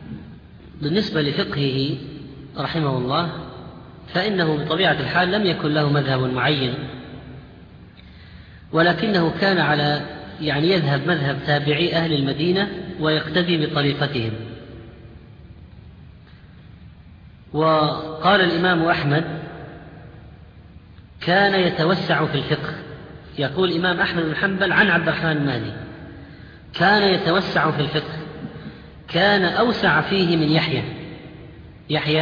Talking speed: 90 wpm